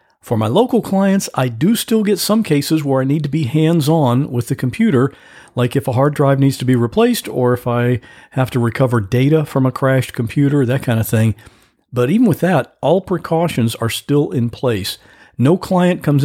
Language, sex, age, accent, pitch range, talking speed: English, male, 50-69, American, 120-175 Hz, 205 wpm